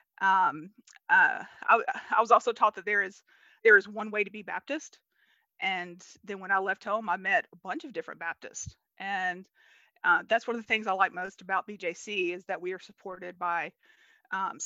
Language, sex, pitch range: English, female, 190-225 Hz